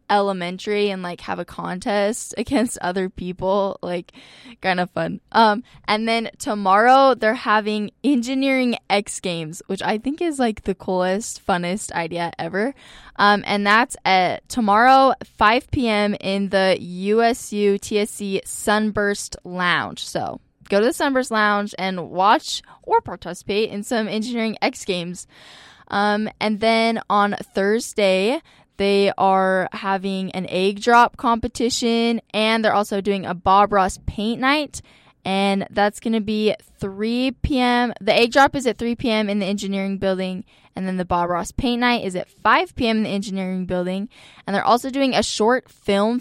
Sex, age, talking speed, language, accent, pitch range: female, 10-29, 155 wpm, English, American, 190-235 Hz